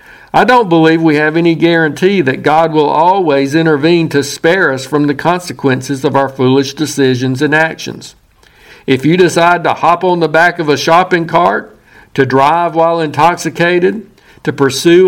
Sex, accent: male, American